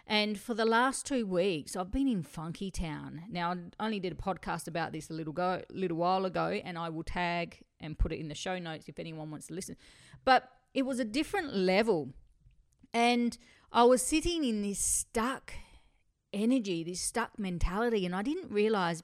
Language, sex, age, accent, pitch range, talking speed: English, female, 40-59, Australian, 170-225 Hz, 195 wpm